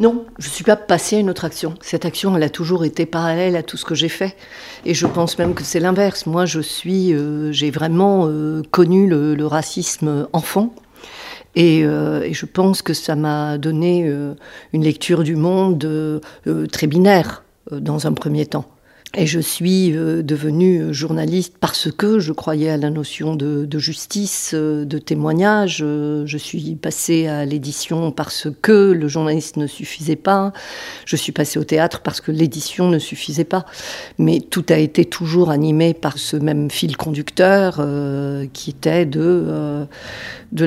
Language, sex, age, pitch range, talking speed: French, female, 50-69, 150-175 Hz, 185 wpm